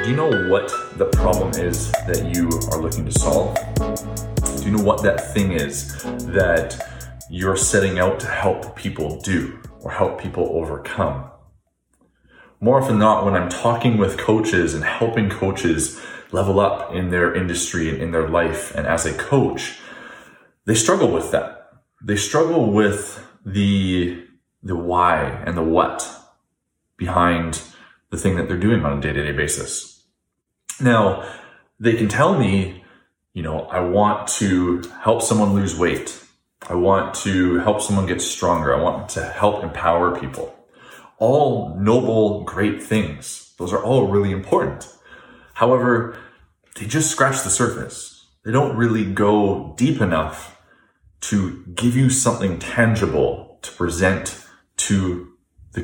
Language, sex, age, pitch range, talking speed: English, male, 20-39, 90-110 Hz, 145 wpm